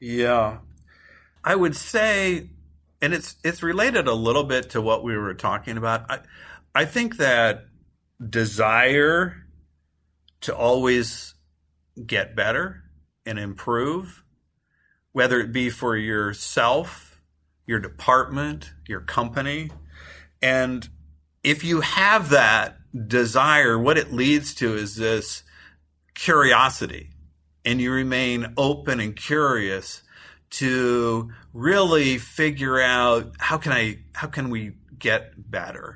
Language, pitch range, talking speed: English, 95-130 Hz, 115 wpm